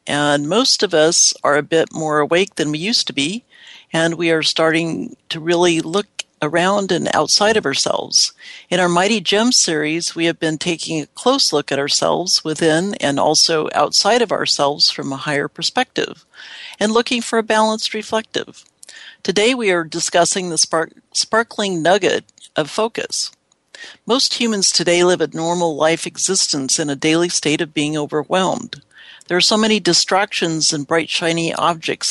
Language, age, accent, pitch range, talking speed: English, 60-79, American, 155-195 Hz, 165 wpm